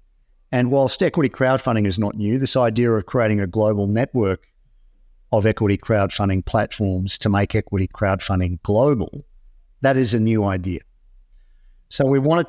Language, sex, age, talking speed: English, male, 50-69, 150 wpm